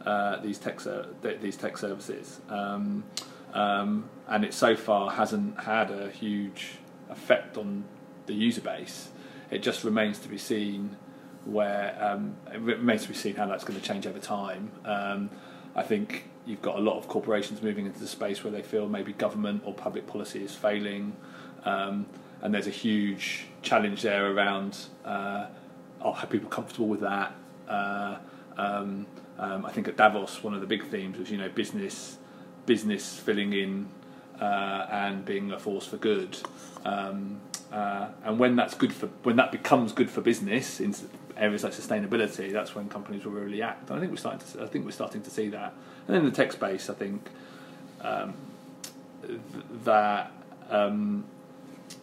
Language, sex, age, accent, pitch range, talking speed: English, male, 30-49, British, 100-105 Hz, 180 wpm